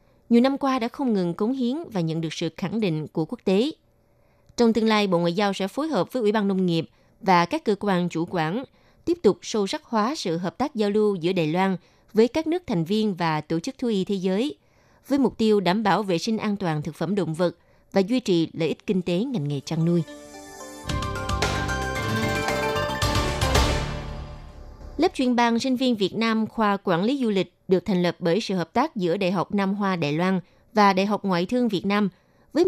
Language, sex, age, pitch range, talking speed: Vietnamese, female, 20-39, 175-230 Hz, 220 wpm